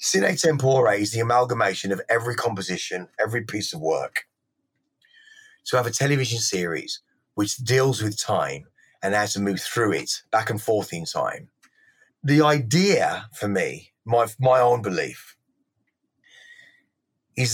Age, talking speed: 30-49, 140 wpm